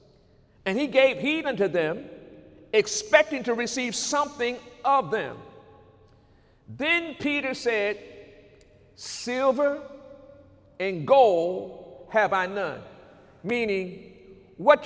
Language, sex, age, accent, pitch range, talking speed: English, male, 50-69, American, 220-295 Hz, 95 wpm